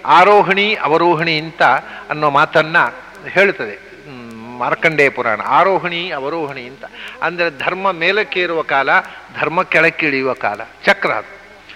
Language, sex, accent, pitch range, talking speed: English, male, Indian, 160-210 Hz, 85 wpm